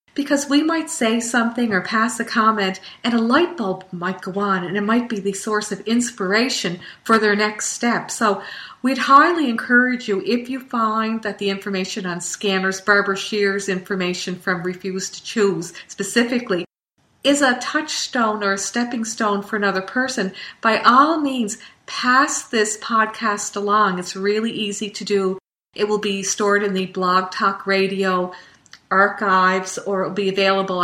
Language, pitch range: English, 195-255 Hz